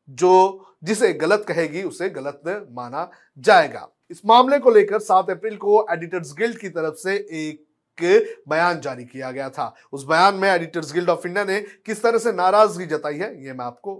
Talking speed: 185 wpm